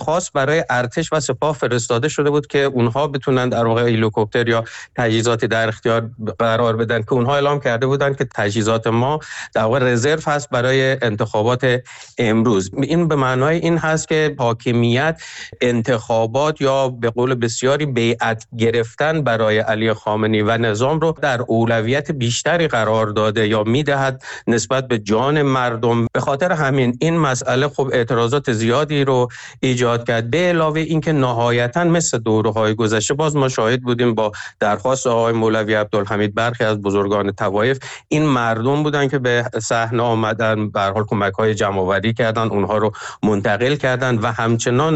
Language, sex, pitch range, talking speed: Persian, male, 110-135 Hz, 150 wpm